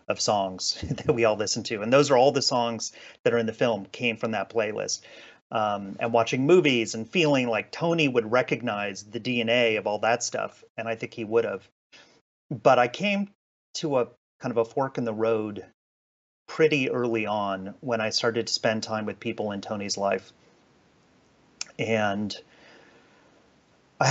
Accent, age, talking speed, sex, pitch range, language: American, 30-49, 175 wpm, male, 105-125 Hz, English